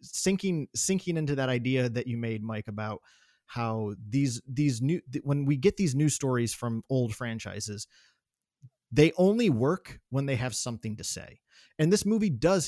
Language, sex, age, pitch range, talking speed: English, male, 30-49, 115-150 Hz, 170 wpm